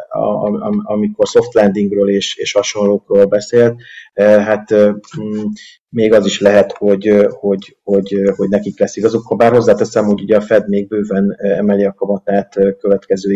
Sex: male